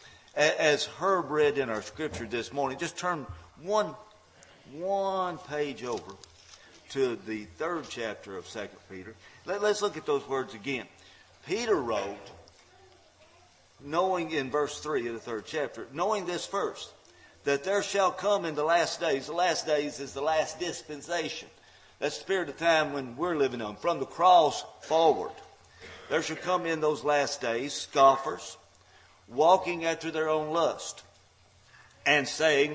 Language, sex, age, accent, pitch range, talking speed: English, male, 50-69, American, 130-175 Hz, 155 wpm